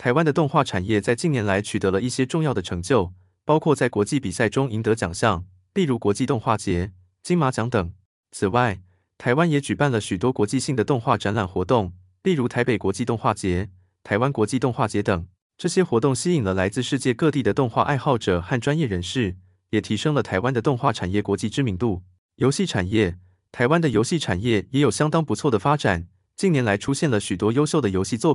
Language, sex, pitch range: Chinese, male, 95-135 Hz